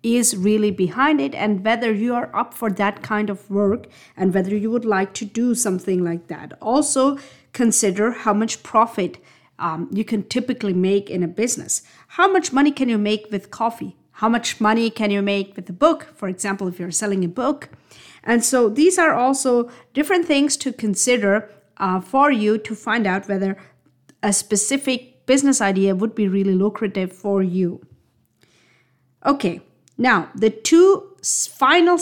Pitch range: 200-255 Hz